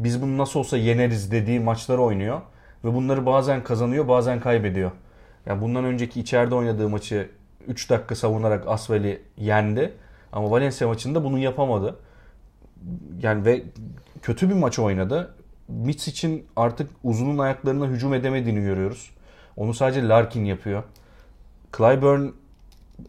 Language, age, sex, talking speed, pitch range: Turkish, 40-59, male, 125 wpm, 105-130 Hz